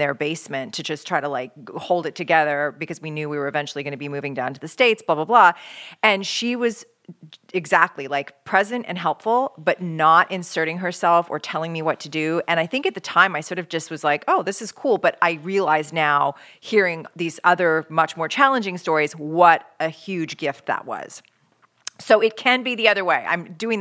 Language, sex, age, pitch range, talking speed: English, female, 40-59, 160-205 Hz, 220 wpm